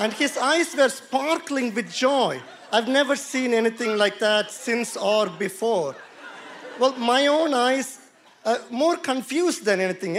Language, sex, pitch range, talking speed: English, male, 210-265 Hz, 145 wpm